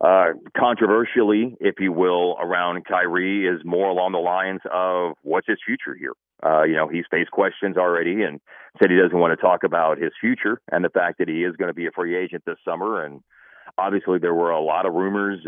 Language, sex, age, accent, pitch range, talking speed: English, male, 40-59, American, 85-105 Hz, 215 wpm